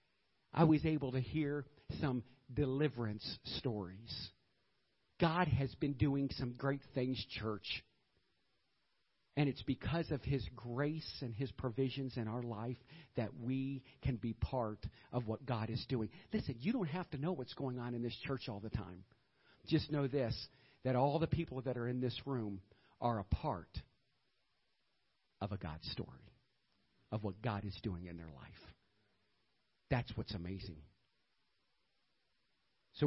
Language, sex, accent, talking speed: English, male, American, 150 wpm